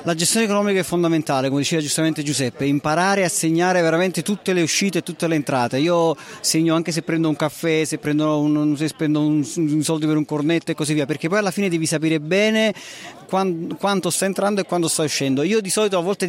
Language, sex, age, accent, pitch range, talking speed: Italian, male, 30-49, native, 155-190 Hz, 230 wpm